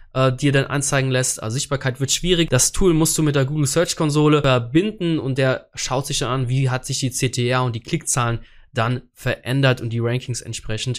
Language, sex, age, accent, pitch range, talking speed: German, male, 20-39, German, 125-150 Hz, 210 wpm